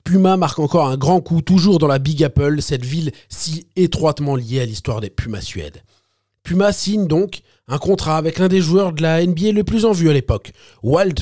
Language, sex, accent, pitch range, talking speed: French, male, French, 110-165 Hz, 215 wpm